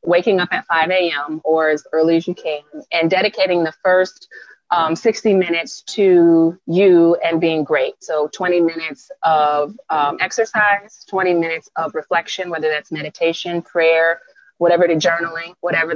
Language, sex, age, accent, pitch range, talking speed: English, female, 30-49, American, 150-180 Hz, 155 wpm